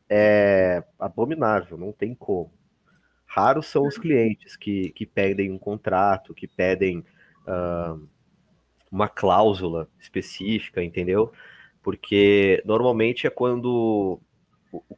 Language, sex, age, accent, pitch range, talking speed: Portuguese, male, 30-49, Brazilian, 95-120 Hz, 105 wpm